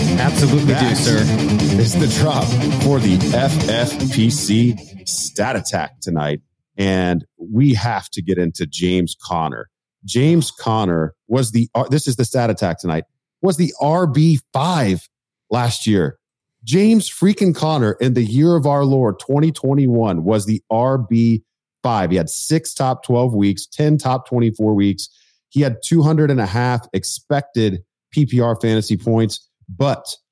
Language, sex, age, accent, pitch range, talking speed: English, male, 40-59, American, 95-125 Hz, 135 wpm